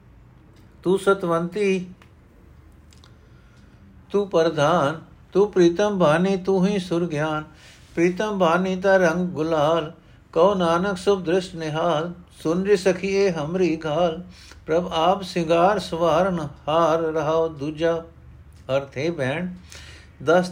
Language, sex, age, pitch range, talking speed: Punjabi, male, 60-79, 125-170 Hz, 105 wpm